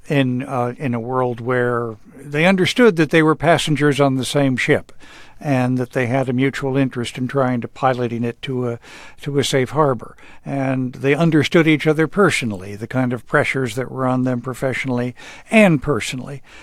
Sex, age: male, 60-79